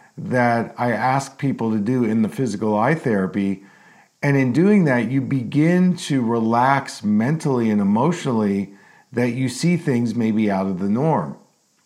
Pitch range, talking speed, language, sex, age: 110-150 Hz, 155 wpm, English, male, 50-69